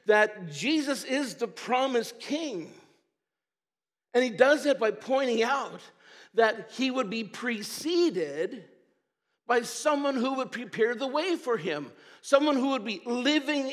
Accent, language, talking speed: American, English, 140 wpm